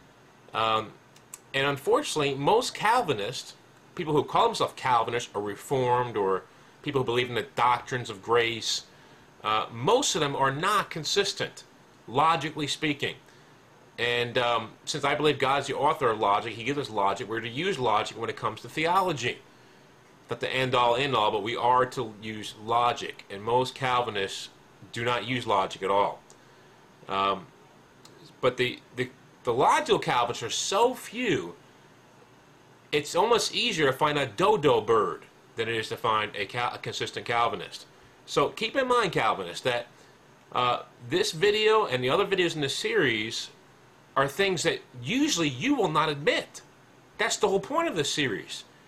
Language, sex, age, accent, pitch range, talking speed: English, male, 30-49, American, 120-165 Hz, 165 wpm